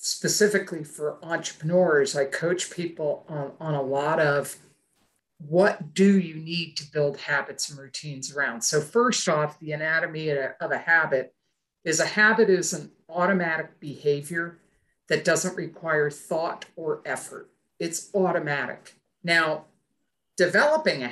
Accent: American